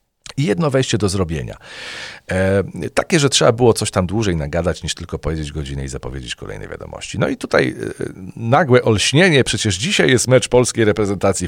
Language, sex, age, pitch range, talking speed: Polish, male, 40-59, 90-120 Hz, 180 wpm